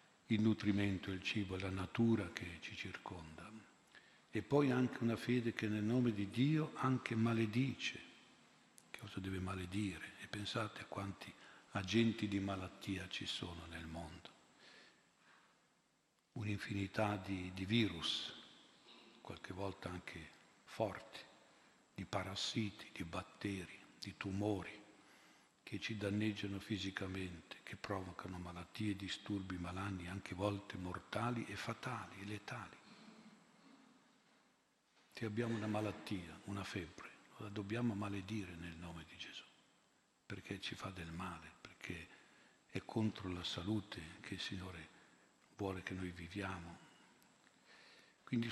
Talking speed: 120 wpm